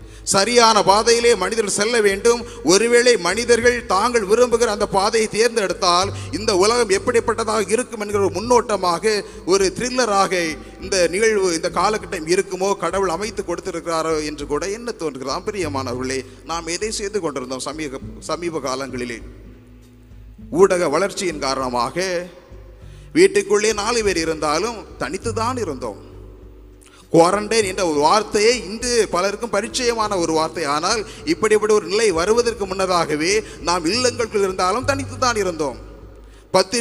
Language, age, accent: Tamil, 30-49, native